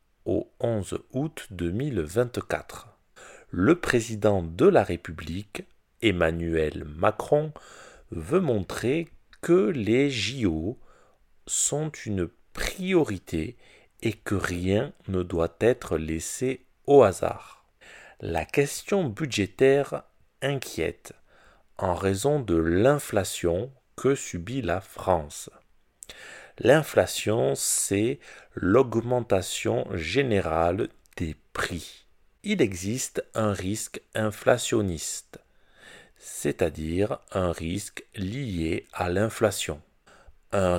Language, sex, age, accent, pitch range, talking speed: French, male, 40-59, French, 90-135 Hz, 85 wpm